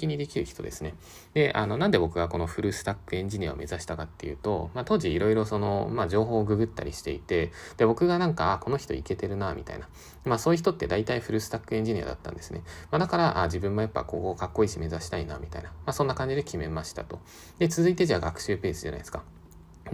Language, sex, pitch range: Japanese, male, 85-125 Hz